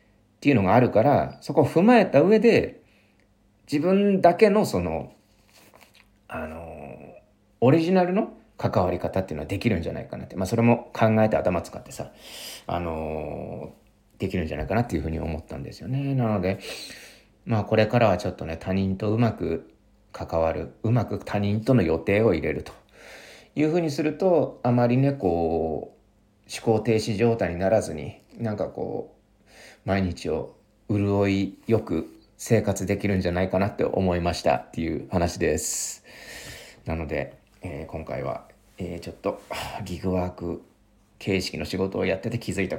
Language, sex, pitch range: Japanese, male, 90-115 Hz